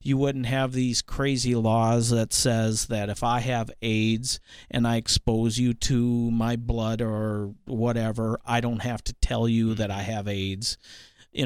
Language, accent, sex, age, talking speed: English, American, male, 40-59, 175 wpm